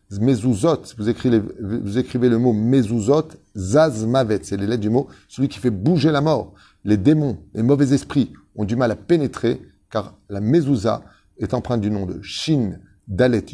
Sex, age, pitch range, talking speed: male, 30-49, 105-140 Hz, 180 wpm